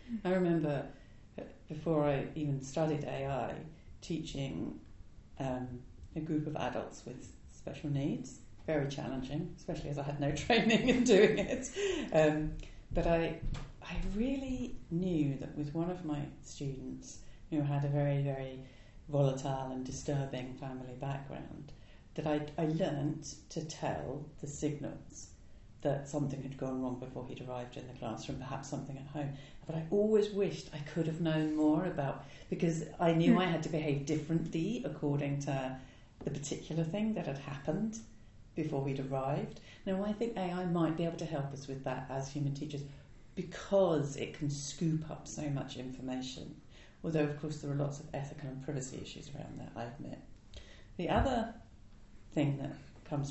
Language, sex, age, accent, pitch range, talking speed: English, female, 40-59, British, 135-160 Hz, 165 wpm